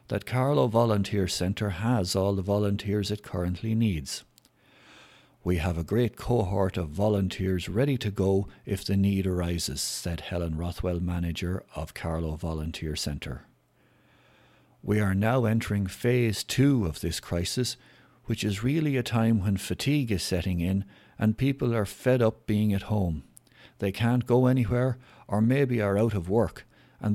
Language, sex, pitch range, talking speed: English, male, 95-120 Hz, 155 wpm